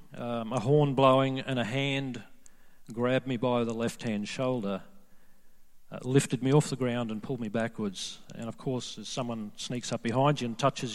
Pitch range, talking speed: 115-150 Hz, 190 wpm